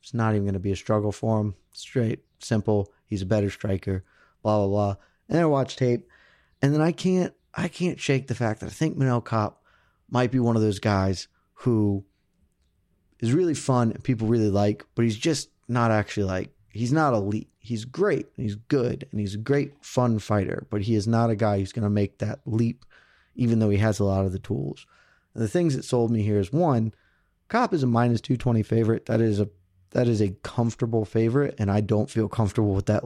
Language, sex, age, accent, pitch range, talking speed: English, male, 30-49, American, 100-120 Hz, 225 wpm